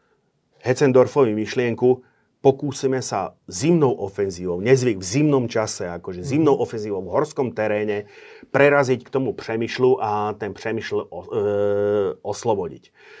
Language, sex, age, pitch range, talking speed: Slovak, male, 40-59, 110-130 Hz, 110 wpm